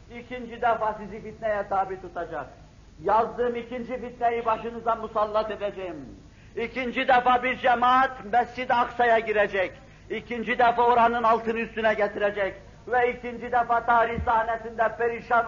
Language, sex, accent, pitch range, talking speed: Turkish, male, native, 205-240 Hz, 120 wpm